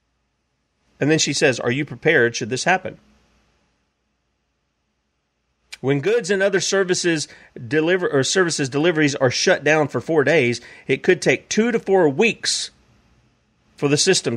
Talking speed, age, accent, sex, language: 145 wpm, 40-59, American, male, English